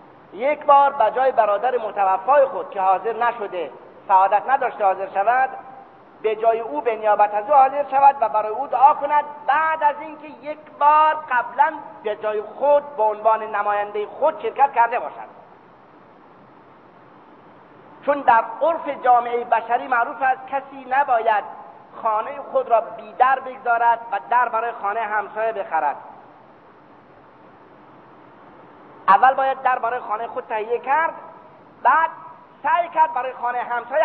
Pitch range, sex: 225-295 Hz, male